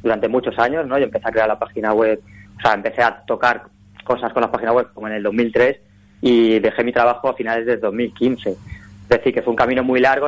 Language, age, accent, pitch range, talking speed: Spanish, 20-39, Spanish, 110-140 Hz, 240 wpm